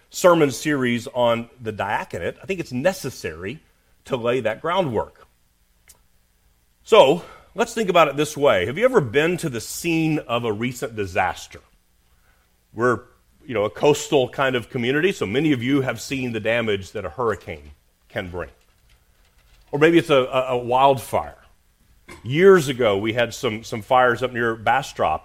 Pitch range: 100-140 Hz